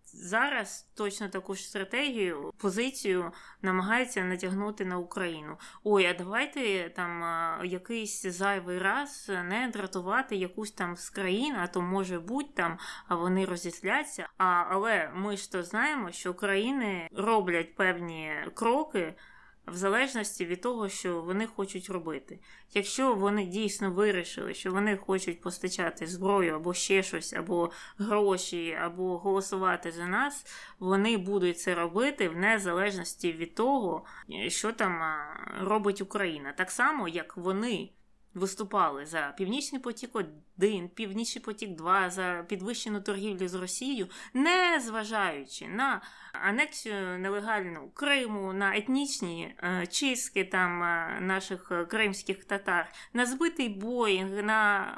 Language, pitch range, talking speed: Ukrainian, 180-220 Hz, 125 wpm